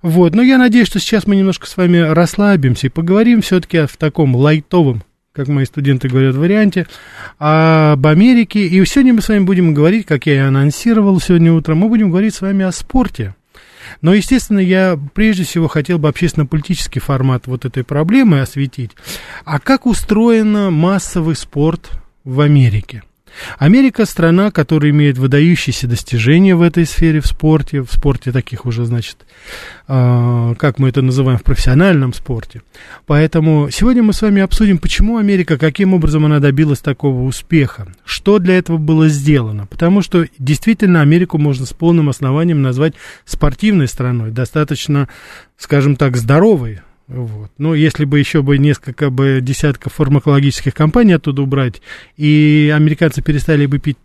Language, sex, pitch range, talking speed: Russian, male, 135-180 Hz, 155 wpm